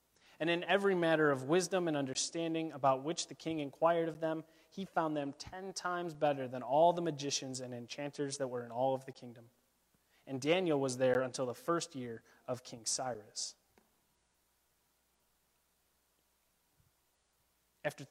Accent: American